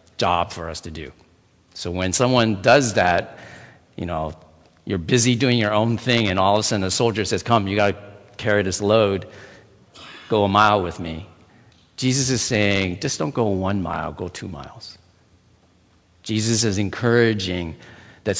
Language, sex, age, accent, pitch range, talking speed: English, male, 50-69, American, 90-110 Hz, 175 wpm